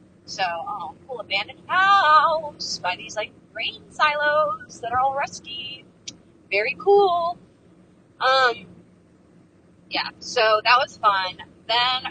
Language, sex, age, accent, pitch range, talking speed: English, female, 20-39, American, 185-270 Hz, 115 wpm